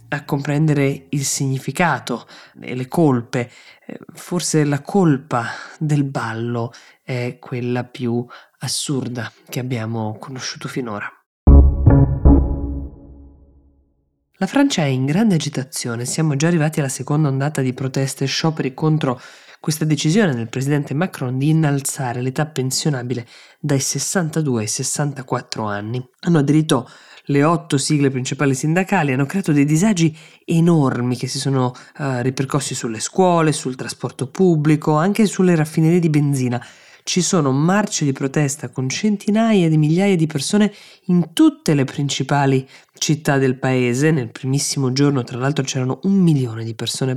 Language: Italian